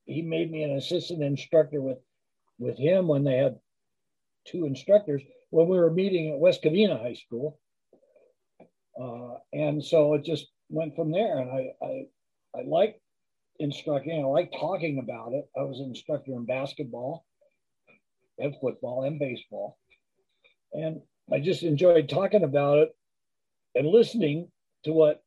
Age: 60-79